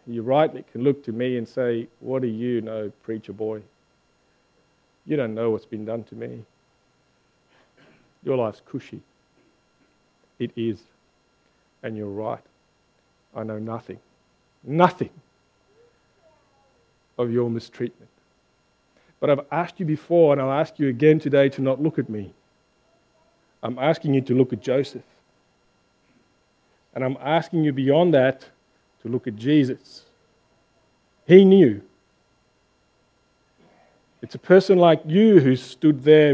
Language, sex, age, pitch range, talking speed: English, male, 50-69, 120-155 Hz, 130 wpm